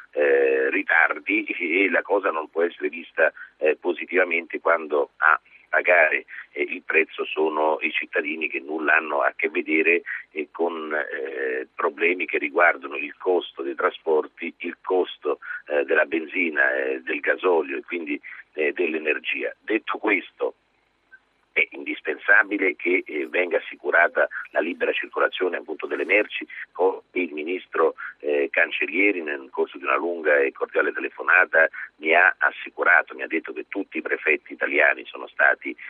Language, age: Italian, 50-69